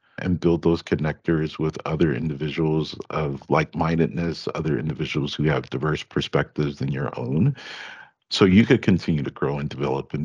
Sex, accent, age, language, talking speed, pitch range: male, American, 50-69, English, 160 wpm, 75-90 Hz